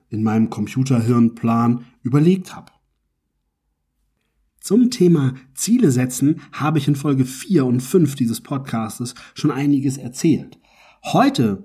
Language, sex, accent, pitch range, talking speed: German, male, German, 115-155 Hz, 115 wpm